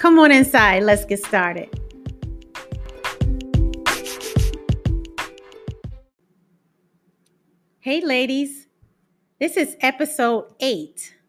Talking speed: 65 wpm